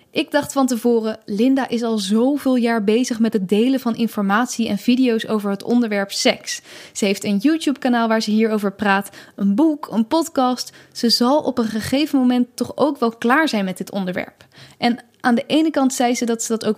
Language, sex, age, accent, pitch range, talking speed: Dutch, female, 10-29, Dutch, 220-260 Hz, 205 wpm